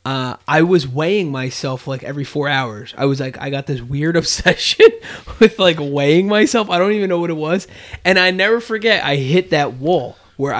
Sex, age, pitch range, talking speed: male, 20-39, 125-160 Hz, 210 wpm